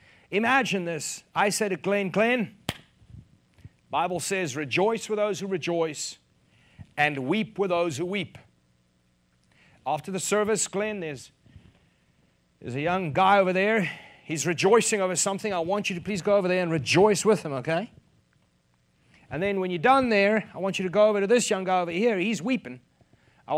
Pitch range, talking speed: 150-205 Hz, 175 wpm